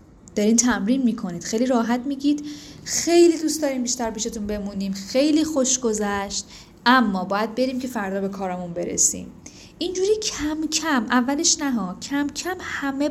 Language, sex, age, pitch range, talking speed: Persian, female, 10-29, 200-280 Hz, 150 wpm